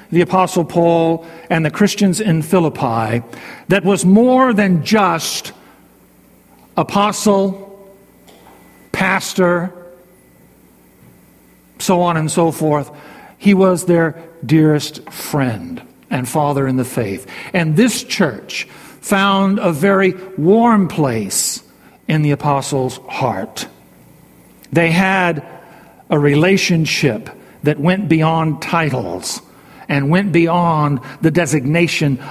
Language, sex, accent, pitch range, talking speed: English, male, American, 140-190 Hz, 100 wpm